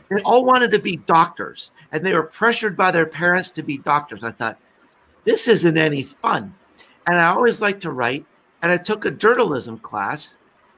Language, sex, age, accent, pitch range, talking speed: English, male, 50-69, American, 145-185 Hz, 190 wpm